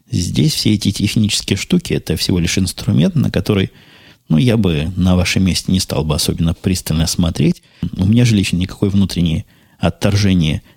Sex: male